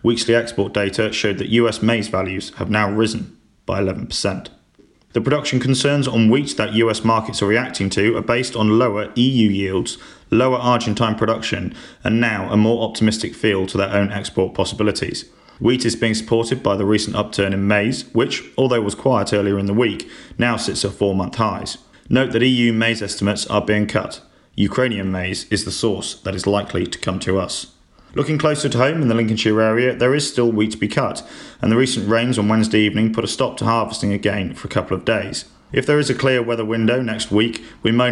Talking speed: 205 wpm